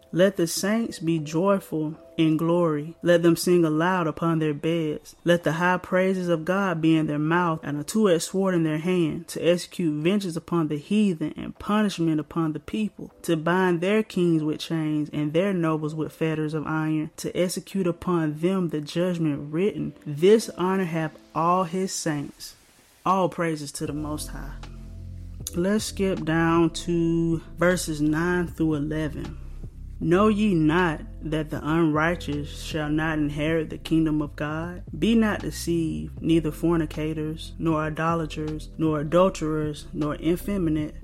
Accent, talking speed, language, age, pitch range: American, 155 wpm, English, 20-39, 155-175 Hz